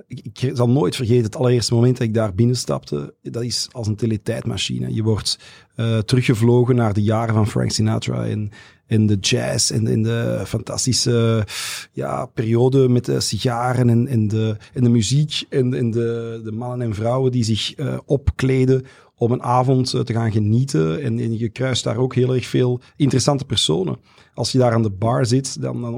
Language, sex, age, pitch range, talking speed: Dutch, male, 40-59, 115-130 Hz, 185 wpm